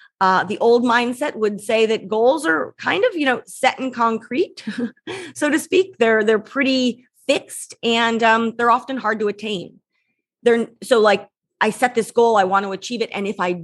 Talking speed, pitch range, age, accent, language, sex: 200 wpm, 195-245 Hz, 30-49, American, English, female